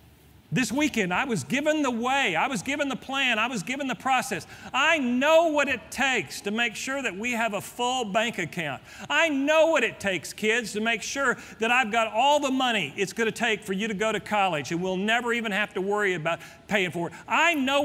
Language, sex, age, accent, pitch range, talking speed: English, male, 40-59, American, 175-265 Hz, 235 wpm